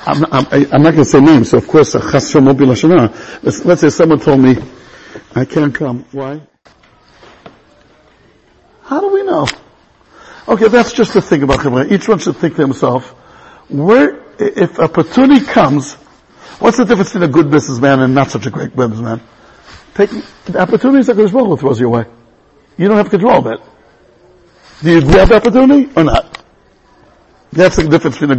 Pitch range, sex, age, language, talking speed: 140-215 Hz, male, 60-79, English, 175 wpm